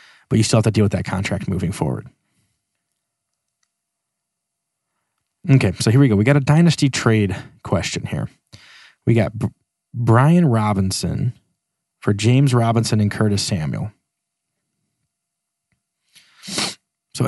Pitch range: 105-125 Hz